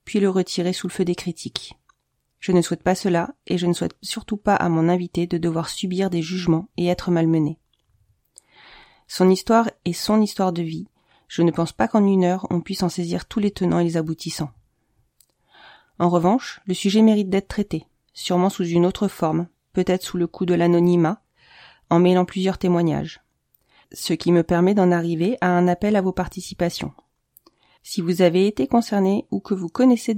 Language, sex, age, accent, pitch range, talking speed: French, female, 30-49, French, 175-200 Hz, 195 wpm